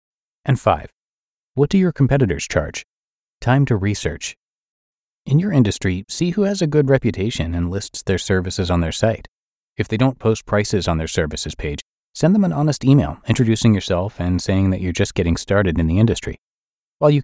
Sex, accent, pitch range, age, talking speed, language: male, American, 85-125 Hz, 30-49, 190 wpm, English